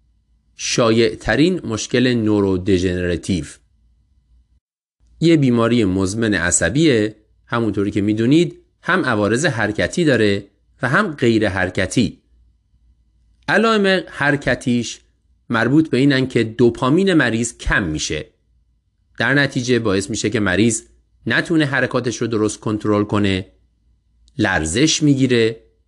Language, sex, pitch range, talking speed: Persian, male, 95-135 Hz, 100 wpm